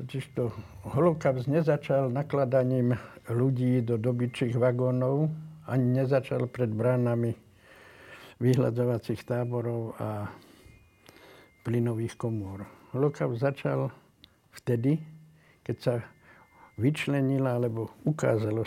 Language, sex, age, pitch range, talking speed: Slovak, male, 70-89, 115-140 Hz, 80 wpm